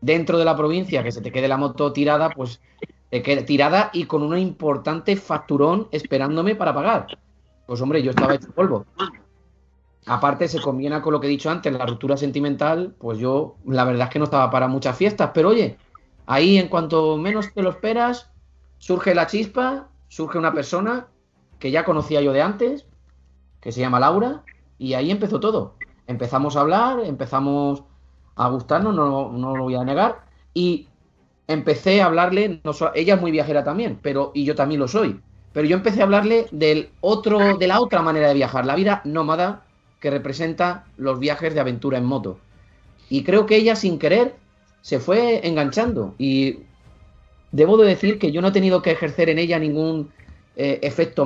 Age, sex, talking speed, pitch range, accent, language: 30-49, male, 185 wpm, 130-180 Hz, Spanish, Spanish